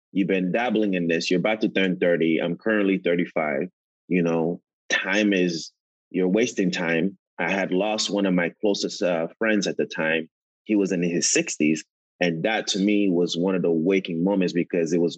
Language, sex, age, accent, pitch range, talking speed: English, male, 30-49, American, 85-95 Hz, 200 wpm